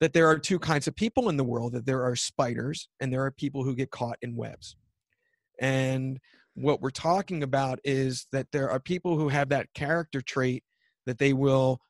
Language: English